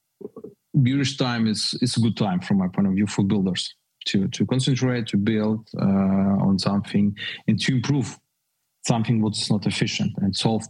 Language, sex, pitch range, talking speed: English, male, 100-130 Hz, 175 wpm